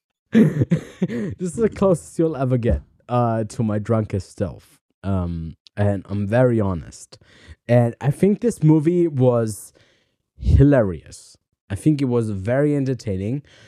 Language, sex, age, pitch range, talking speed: English, male, 20-39, 105-140 Hz, 130 wpm